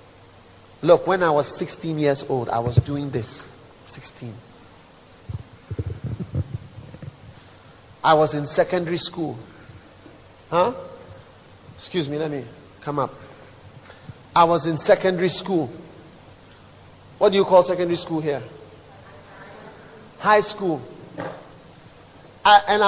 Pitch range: 130-195 Hz